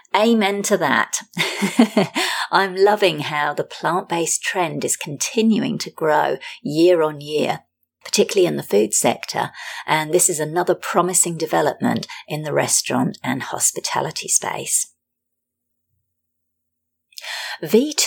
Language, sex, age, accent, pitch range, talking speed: English, female, 40-59, British, 150-230 Hz, 115 wpm